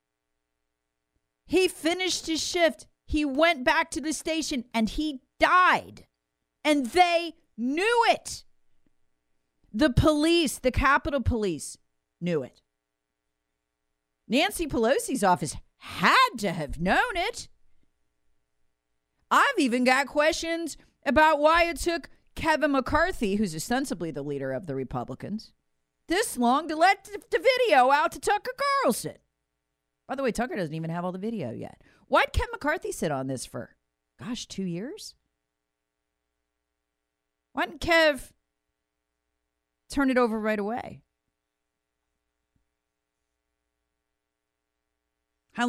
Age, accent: 40-59, American